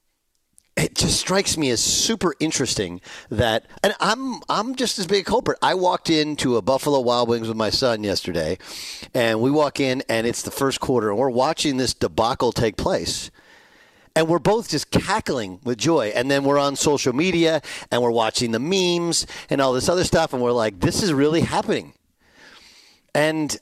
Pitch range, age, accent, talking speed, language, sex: 125-165 Hz, 40-59, American, 190 wpm, English, male